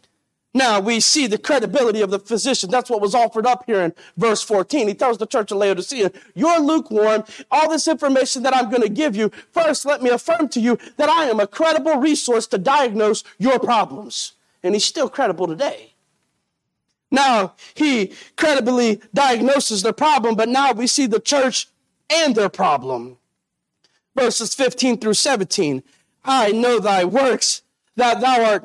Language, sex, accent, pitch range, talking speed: English, male, American, 220-285 Hz, 170 wpm